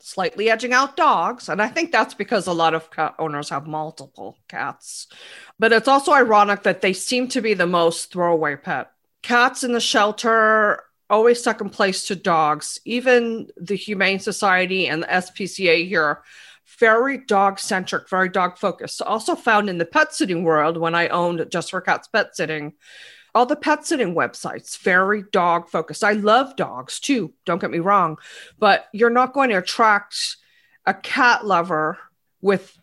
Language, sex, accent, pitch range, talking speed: English, female, American, 175-245 Hz, 165 wpm